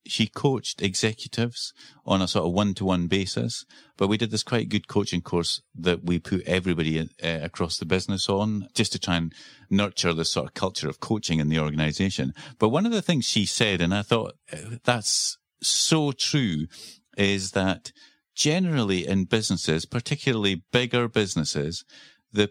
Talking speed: 165 wpm